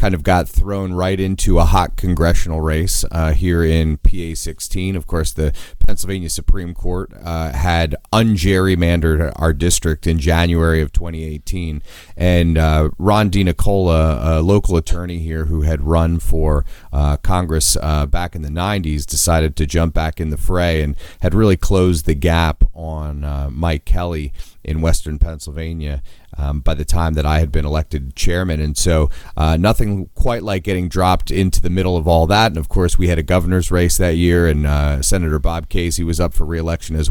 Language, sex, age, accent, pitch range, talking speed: English, male, 30-49, American, 80-95 Hz, 180 wpm